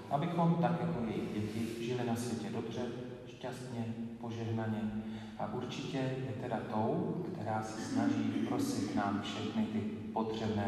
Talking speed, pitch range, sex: 135 wpm, 105-115 Hz, male